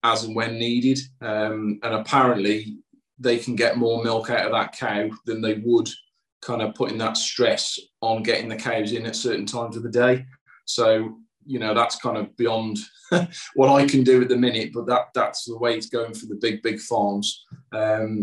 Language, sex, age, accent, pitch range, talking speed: English, male, 20-39, British, 105-120 Hz, 205 wpm